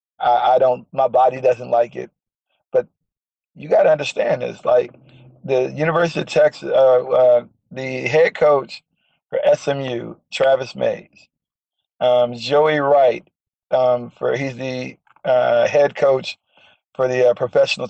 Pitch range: 125-155 Hz